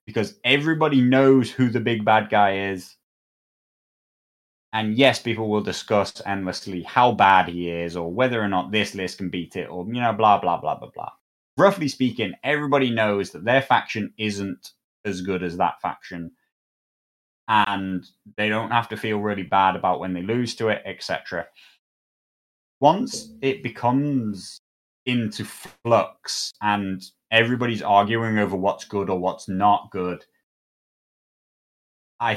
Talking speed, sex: 150 wpm, male